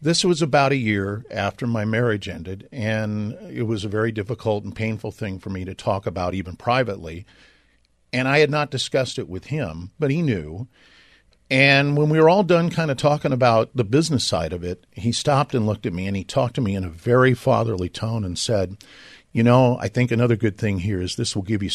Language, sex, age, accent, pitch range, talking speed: English, male, 50-69, American, 100-130 Hz, 225 wpm